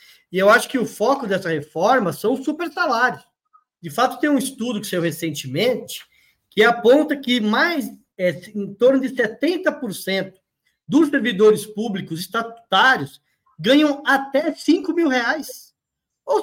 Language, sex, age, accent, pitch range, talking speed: Portuguese, male, 20-39, Brazilian, 200-280 Hz, 140 wpm